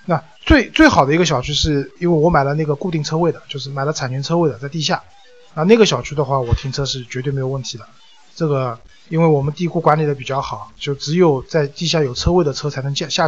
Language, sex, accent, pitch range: Chinese, male, native, 140-180 Hz